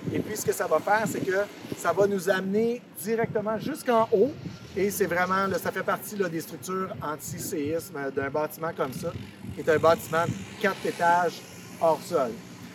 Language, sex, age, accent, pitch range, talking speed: French, male, 40-59, Canadian, 160-215 Hz, 180 wpm